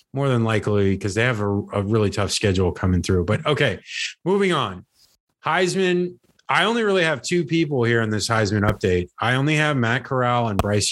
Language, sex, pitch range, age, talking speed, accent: English, male, 115-145 Hz, 30-49, 200 wpm, American